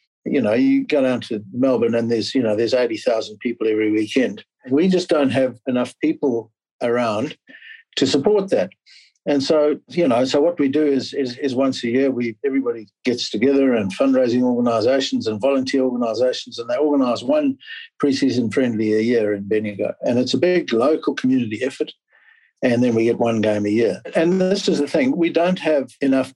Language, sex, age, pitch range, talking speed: English, male, 60-79, 115-155 Hz, 195 wpm